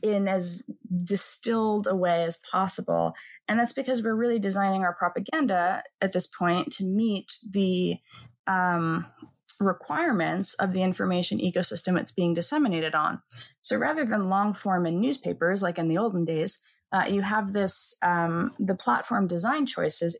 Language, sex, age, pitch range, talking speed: English, female, 20-39, 170-215 Hz, 155 wpm